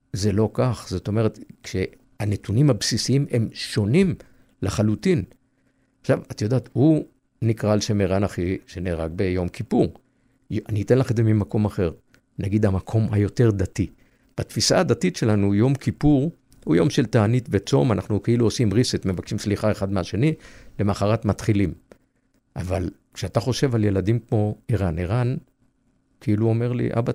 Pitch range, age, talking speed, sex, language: 100-125 Hz, 50-69, 145 wpm, male, Hebrew